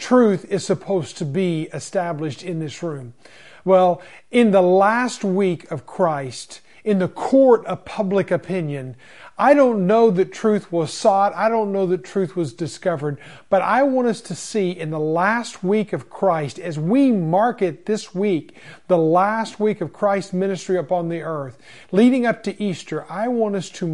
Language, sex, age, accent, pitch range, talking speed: English, male, 40-59, American, 165-205 Hz, 180 wpm